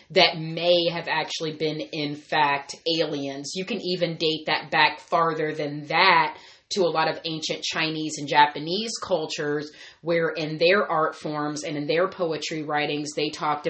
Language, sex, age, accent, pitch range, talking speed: English, female, 30-49, American, 150-175 Hz, 165 wpm